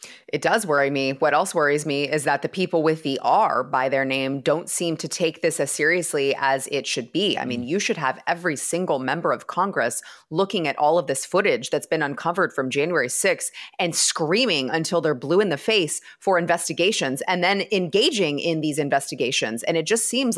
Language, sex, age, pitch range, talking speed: English, female, 30-49, 160-210 Hz, 210 wpm